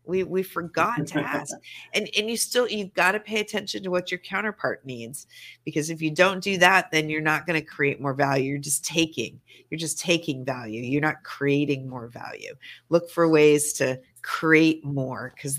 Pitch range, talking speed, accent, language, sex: 140-180 Hz, 200 wpm, American, English, female